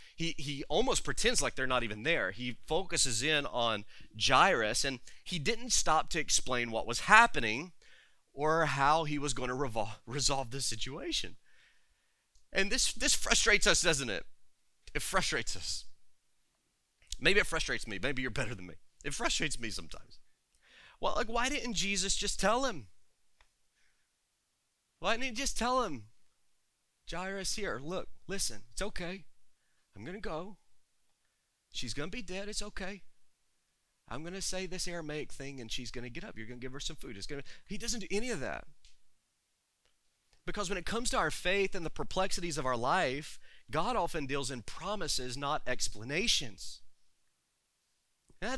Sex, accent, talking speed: male, American, 170 wpm